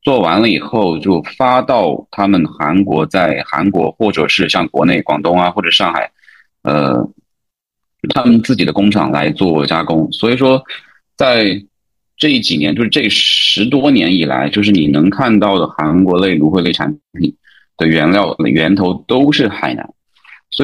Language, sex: Chinese, male